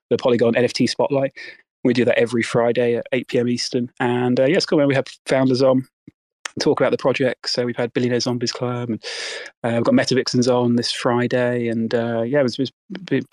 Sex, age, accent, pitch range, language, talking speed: male, 20-39, British, 120-135 Hz, English, 215 wpm